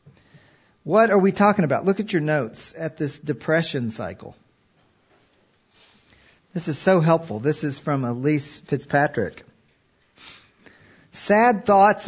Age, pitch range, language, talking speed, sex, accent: 50-69, 145-185 Hz, English, 120 wpm, male, American